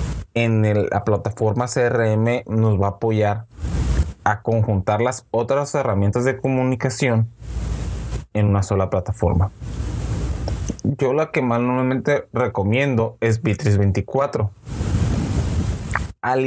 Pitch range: 100-125 Hz